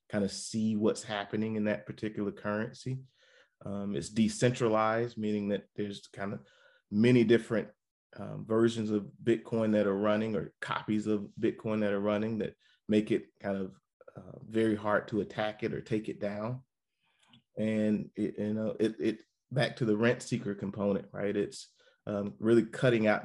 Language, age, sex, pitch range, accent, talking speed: English, 30-49, male, 105-110 Hz, American, 170 wpm